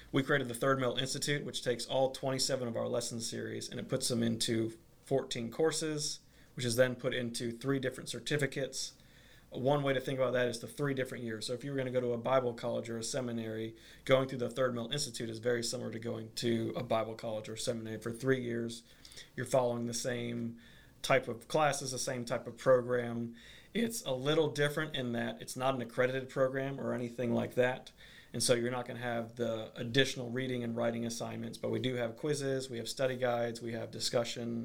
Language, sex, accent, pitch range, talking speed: English, male, American, 115-130 Hz, 220 wpm